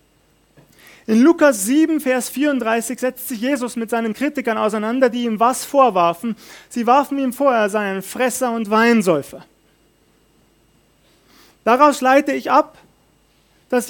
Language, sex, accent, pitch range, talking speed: German, male, German, 195-255 Hz, 130 wpm